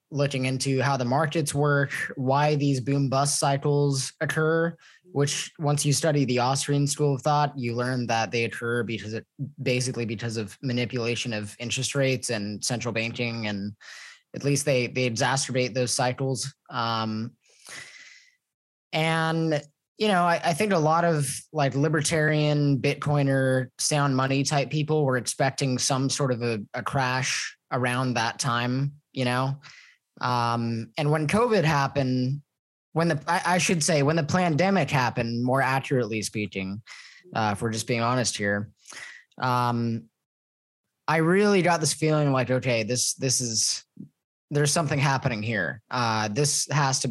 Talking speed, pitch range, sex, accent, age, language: 150 wpm, 120-145 Hz, male, American, 10-29, English